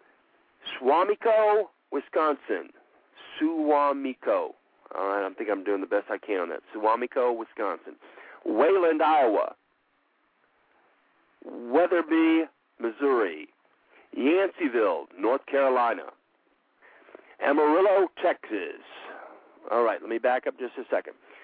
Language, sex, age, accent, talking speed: English, male, 50-69, American, 90 wpm